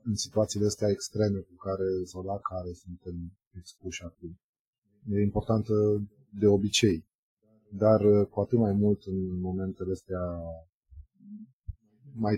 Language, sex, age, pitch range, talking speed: Romanian, male, 30-49, 95-110 Hz, 115 wpm